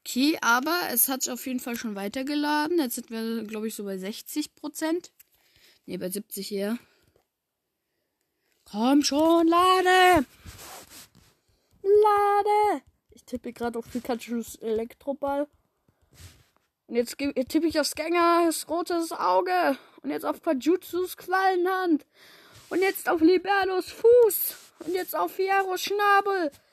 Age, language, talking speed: 10-29, German, 125 wpm